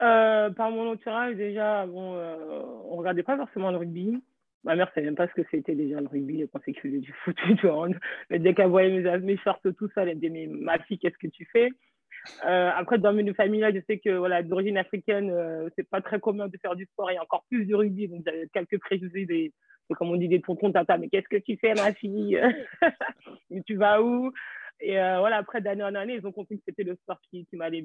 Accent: French